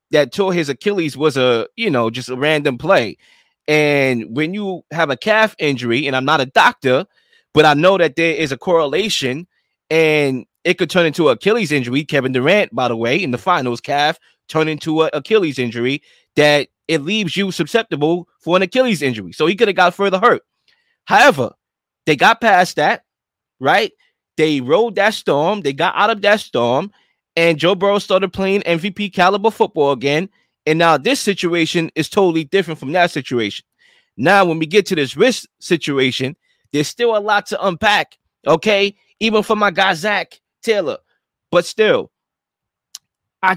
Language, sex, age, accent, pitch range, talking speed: English, male, 20-39, American, 135-195 Hz, 180 wpm